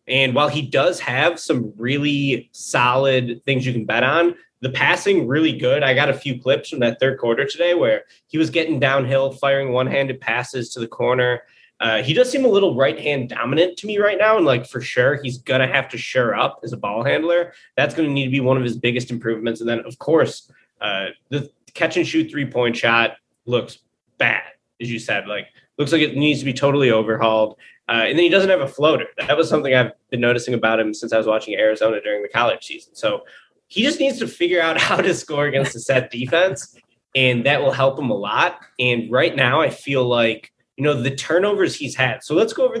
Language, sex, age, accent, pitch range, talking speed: English, male, 20-39, American, 120-160 Hz, 225 wpm